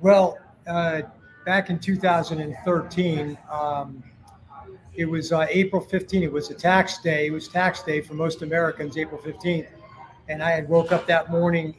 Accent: American